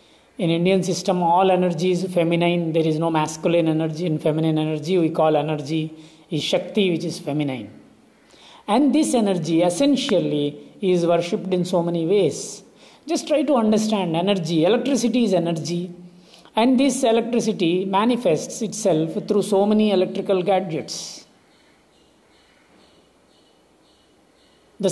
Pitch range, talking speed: 165-210 Hz, 125 wpm